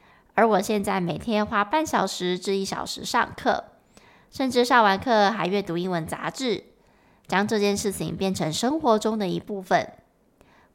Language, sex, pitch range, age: Chinese, female, 185-250 Hz, 20-39